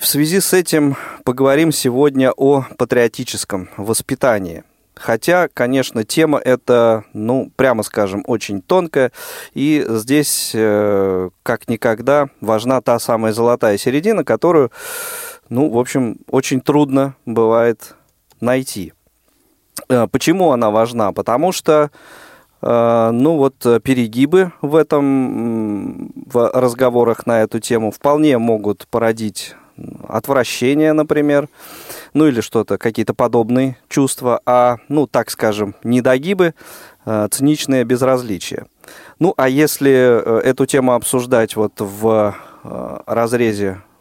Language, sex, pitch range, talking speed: Russian, male, 115-150 Hz, 105 wpm